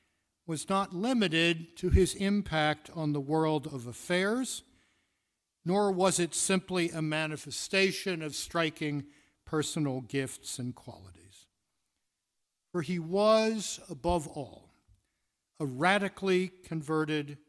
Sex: male